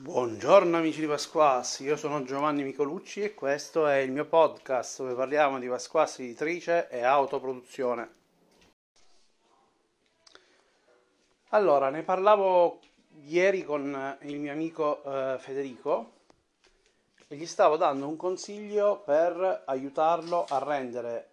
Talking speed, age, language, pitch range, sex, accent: 115 wpm, 30-49, Italian, 135-185 Hz, male, native